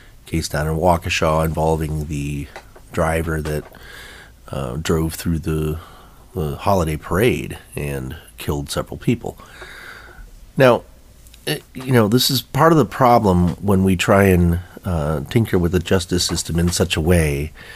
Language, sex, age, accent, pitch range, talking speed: English, male, 30-49, American, 80-100 Hz, 140 wpm